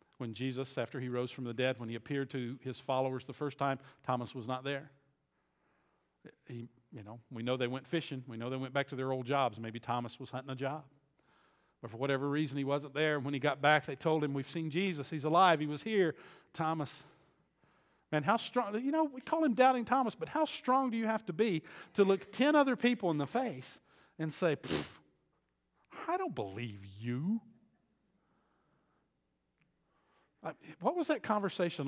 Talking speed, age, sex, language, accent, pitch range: 195 wpm, 50-69, male, English, American, 135-220 Hz